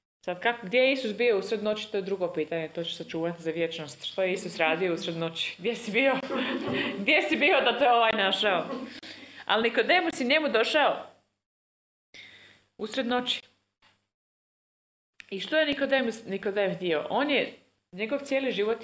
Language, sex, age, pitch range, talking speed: Croatian, female, 20-39, 170-230 Hz, 160 wpm